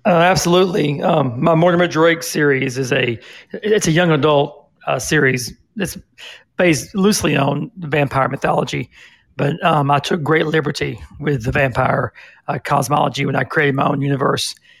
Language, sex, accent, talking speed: English, male, American, 160 wpm